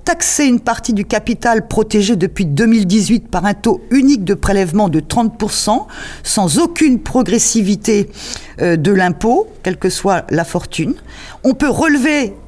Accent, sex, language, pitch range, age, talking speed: French, female, French, 195-250 Hz, 50-69, 140 wpm